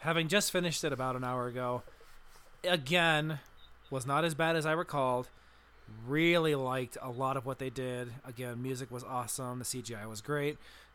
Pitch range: 135-170 Hz